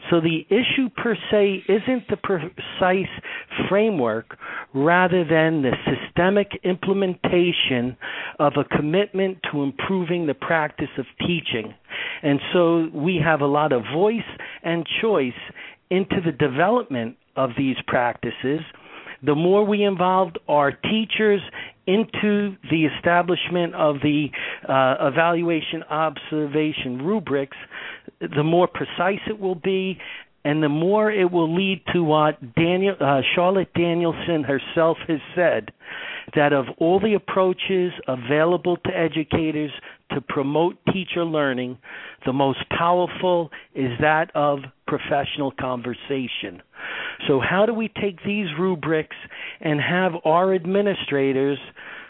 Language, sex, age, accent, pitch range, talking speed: English, male, 50-69, American, 145-185 Hz, 120 wpm